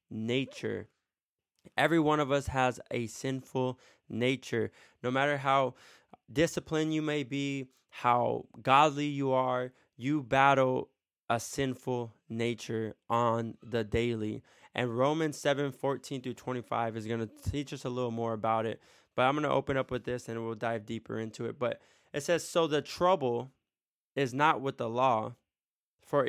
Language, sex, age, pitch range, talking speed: English, male, 20-39, 120-150 Hz, 160 wpm